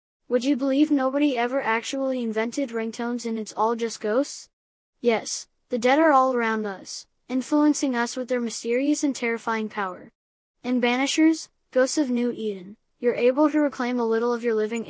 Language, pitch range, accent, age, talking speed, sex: English, 220-255 Hz, American, 20-39, 175 wpm, female